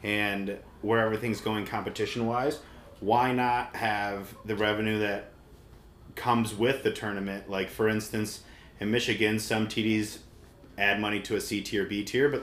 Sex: male